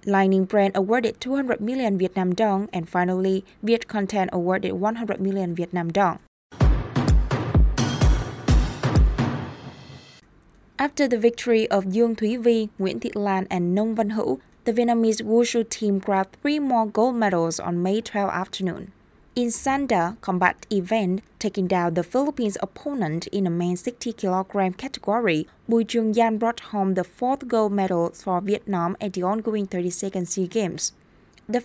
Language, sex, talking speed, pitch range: Vietnamese, female, 145 wpm, 185-230 Hz